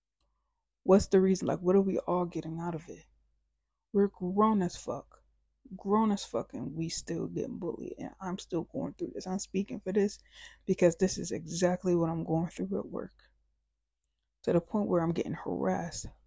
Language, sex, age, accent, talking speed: English, female, 20-39, American, 185 wpm